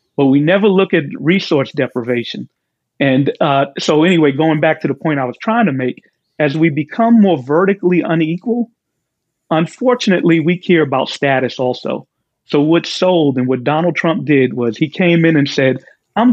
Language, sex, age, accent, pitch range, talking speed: English, male, 40-59, American, 135-170 Hz, 175 wpm